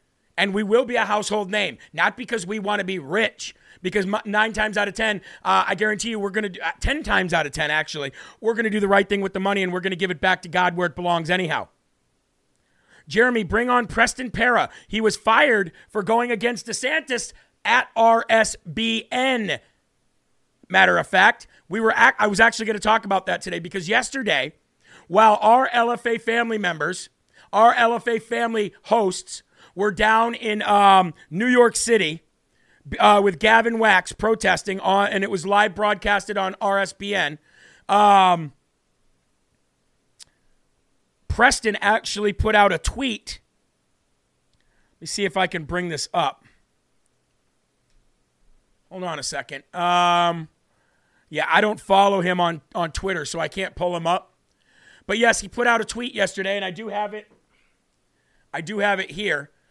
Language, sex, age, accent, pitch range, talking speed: English, male, 40-59, American, 185-225 Hz, 170 wpm